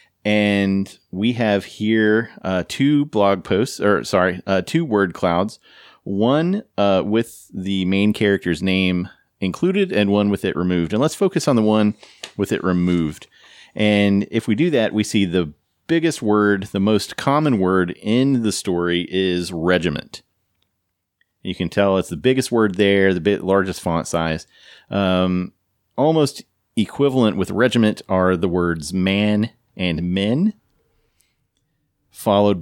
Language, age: English, 30-49